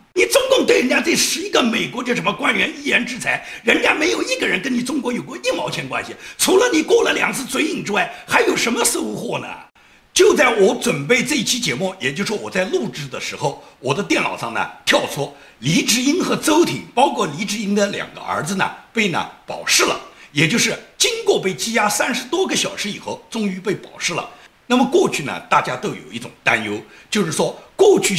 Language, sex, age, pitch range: Chinese, male, 50-69, 180-265 Hz